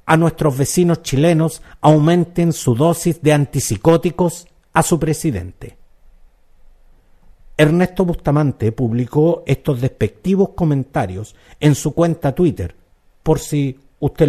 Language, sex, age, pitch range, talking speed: Spanish, male, 50-69, 115-165 Hz, 105 wpm